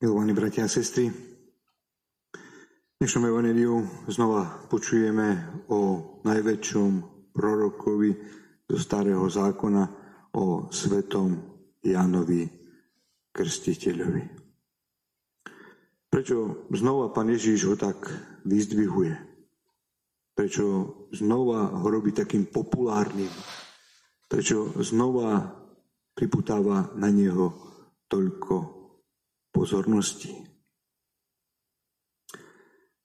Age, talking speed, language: 40-59, 70 wpm, Slovak